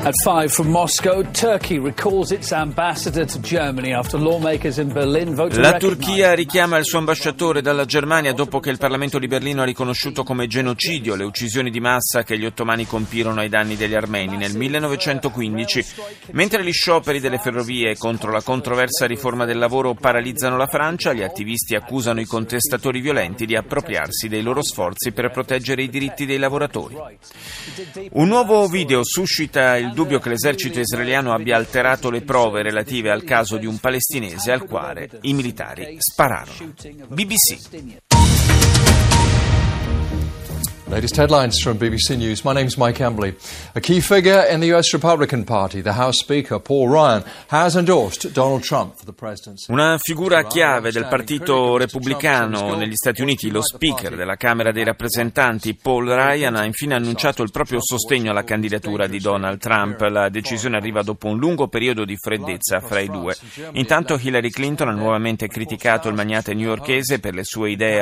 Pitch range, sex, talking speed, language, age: 110-145 Hz, male, 125 wpm, Italian, 30-49